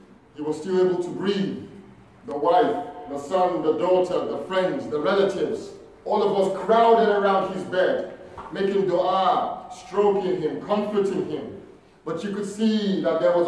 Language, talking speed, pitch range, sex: English, 160 wpm, 170-220 Hz, male